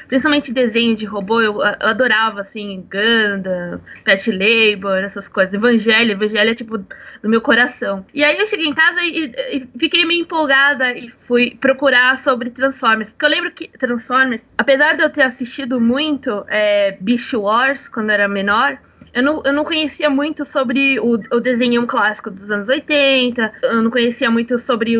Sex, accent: female, Brazilian